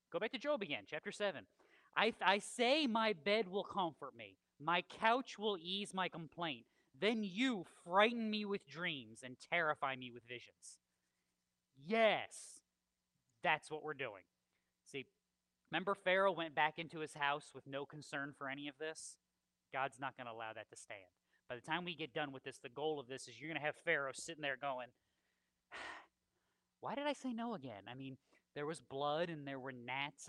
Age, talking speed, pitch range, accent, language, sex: 30-49, 190 wpm, 130-195 Hz, American, English, male